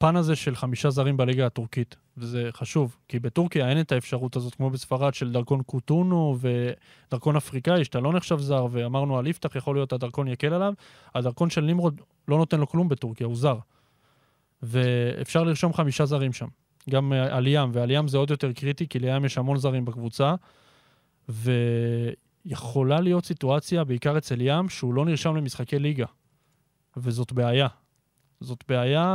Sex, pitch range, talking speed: male, 125-155 Hz, 160 wpm